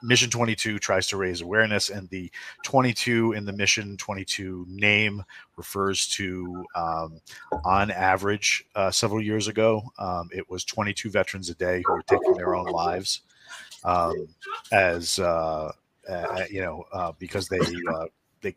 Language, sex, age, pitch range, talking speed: English, male, 40-59, 90-105 Hz, 150 wpm